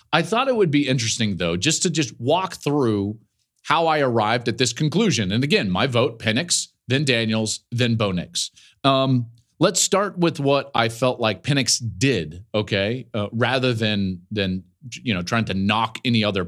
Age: 40-59